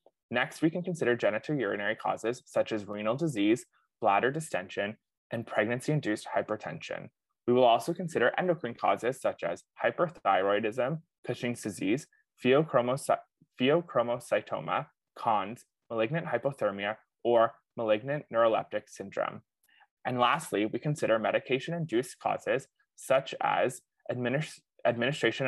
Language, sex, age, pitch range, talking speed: English, male, 20-39, 115-160 Hz, 105 wpm